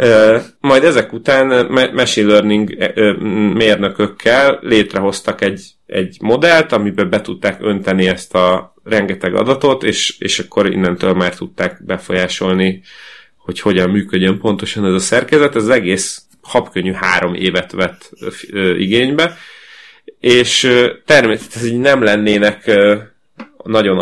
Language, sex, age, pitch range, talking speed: Hungarian, male, 30-49, 95-115 Hz, 110 wpm